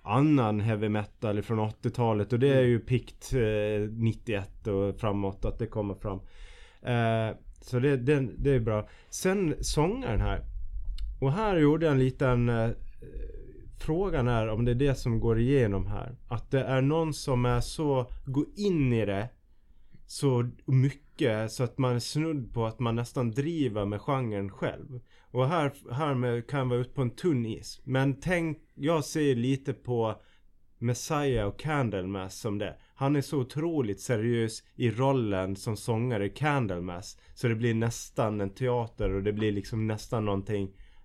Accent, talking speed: Norwegian, 170 wpm